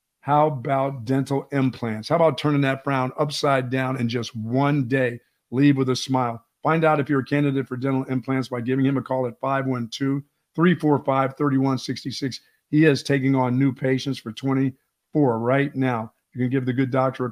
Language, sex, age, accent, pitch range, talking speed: English, male, 50-69, American, 125-140 Hz, 180 wpm